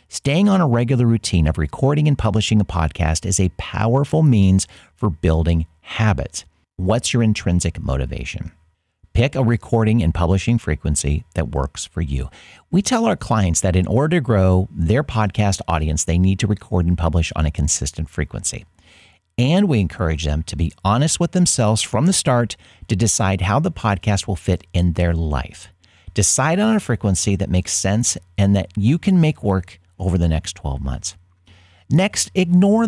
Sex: male